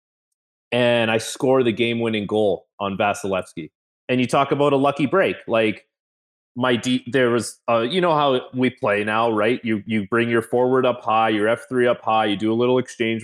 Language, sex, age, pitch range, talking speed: English, male, 30-49, 110-135 Hz, 200 wpm